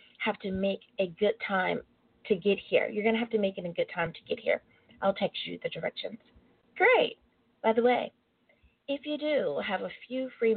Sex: female